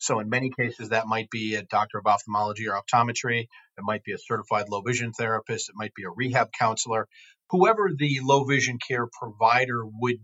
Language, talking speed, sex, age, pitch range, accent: English, 200 wpm, male, 40-59, 110-135 Hz, American